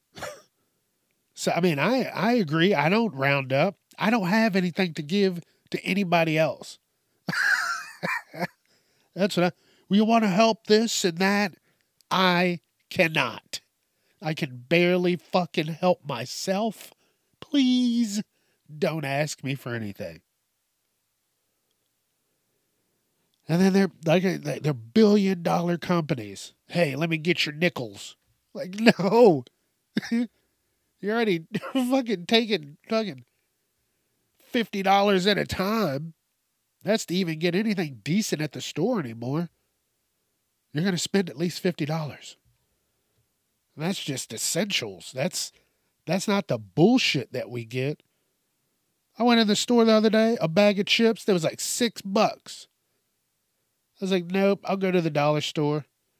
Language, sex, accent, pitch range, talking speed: English, male, American, 150-205 Hz, 130 wpm